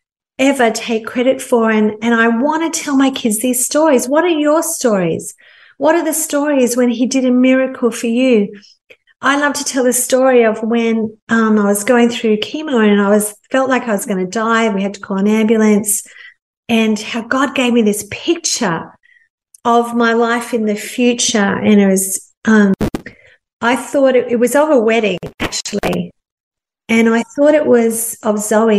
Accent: Australian